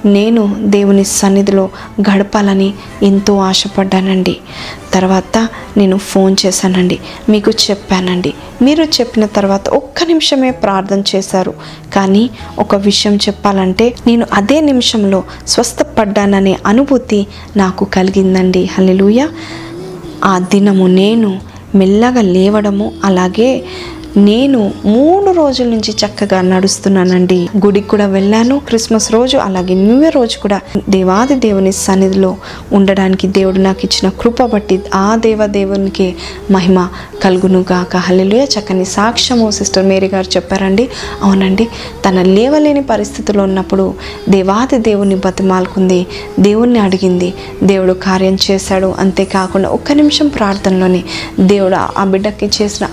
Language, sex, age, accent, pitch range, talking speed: Telugu, female, 20-39, native, 190-215 Hz, 105 wpm